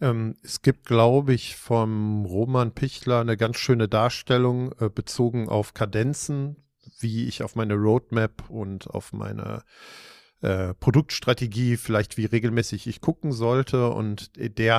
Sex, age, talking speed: male, 50-69, 130 wpm